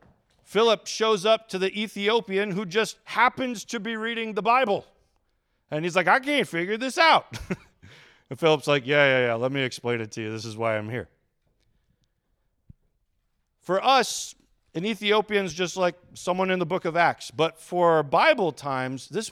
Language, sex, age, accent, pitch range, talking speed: English, male, 40-59, American, 135-195 Hz, 175 wpm